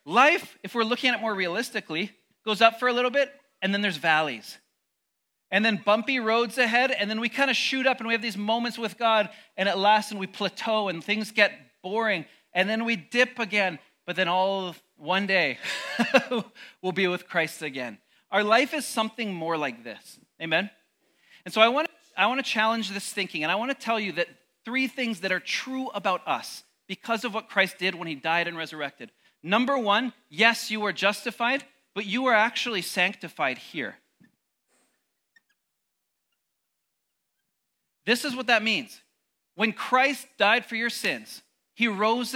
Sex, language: male, English